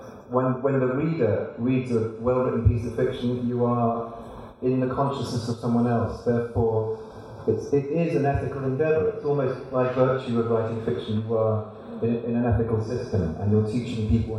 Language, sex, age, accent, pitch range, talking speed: Russian, male, 40-59, British, 100-125 Hz, 185 wpm